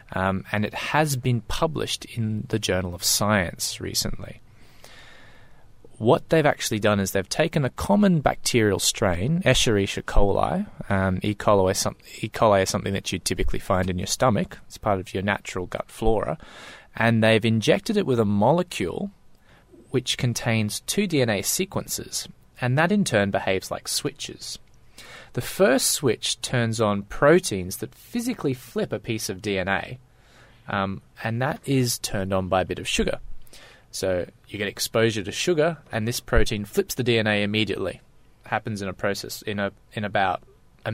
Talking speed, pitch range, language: 165 wpm, 100-130 Hz, English